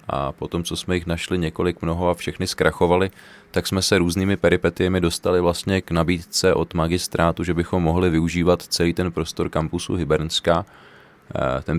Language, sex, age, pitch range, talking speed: Czech, male, 20-39, 80-90 Hz, 165 wpm